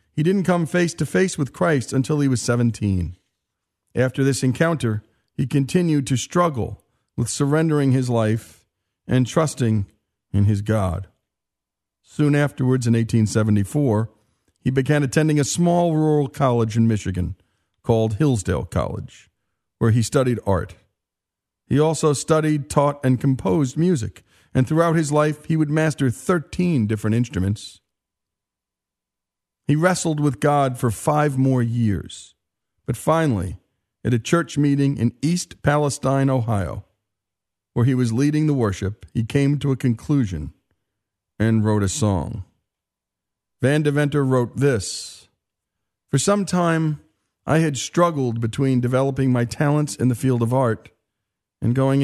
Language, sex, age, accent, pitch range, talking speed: English, male, 50-69, American, 105-145 Hz, 135 wpm